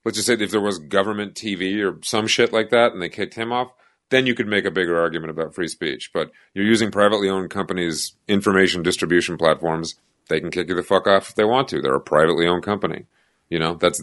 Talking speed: 240 wpm